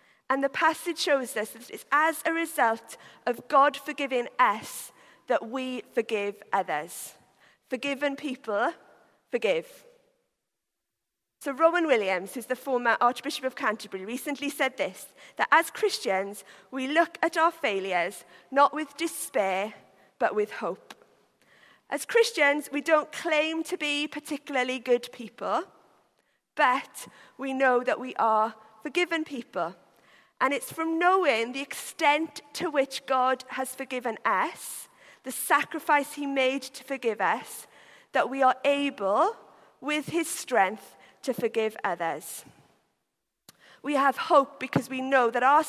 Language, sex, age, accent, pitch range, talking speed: English, female, 40-59, British, 230-305 Hz, 135 wpm